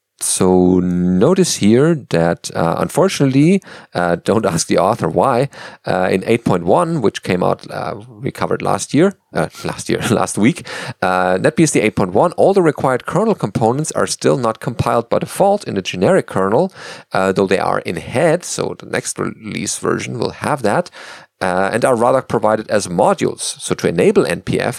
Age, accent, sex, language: 40-59, German, male, English